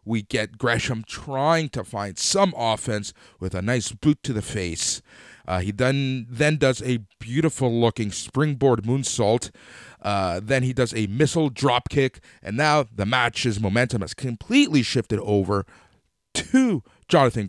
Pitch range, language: 105-135 Hz, English